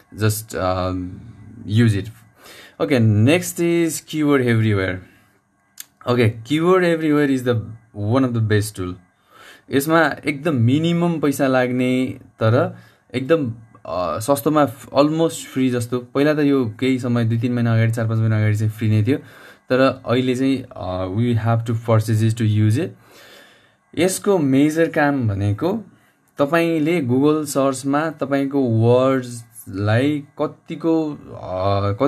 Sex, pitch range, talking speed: male, 115-145 Hz, 75 wpm